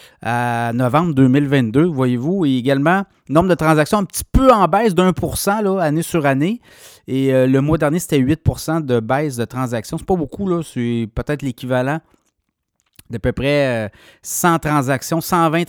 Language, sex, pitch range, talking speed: French, male, 130-165 Hz, 170 wpm